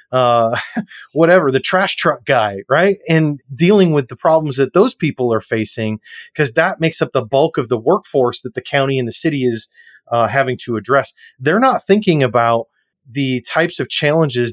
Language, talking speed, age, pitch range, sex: English, 185 wpm, 30-49, 125-160 Hz, male